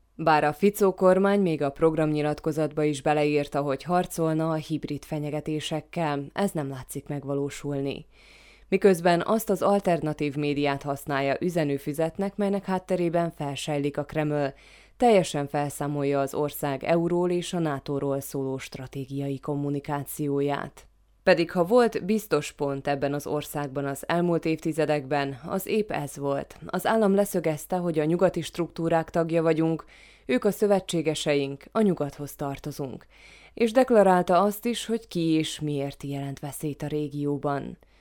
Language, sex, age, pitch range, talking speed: Hungarian, female, 20-39, 145-175 Hz, 130 wpm